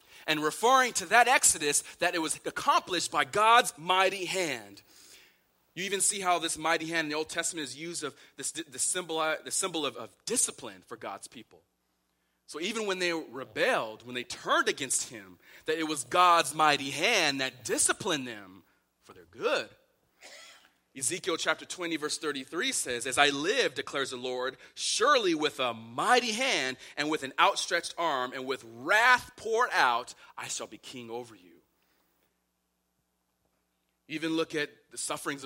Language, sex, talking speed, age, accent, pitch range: English, male, 165 wpm, 30-49, American, 120-180 Hz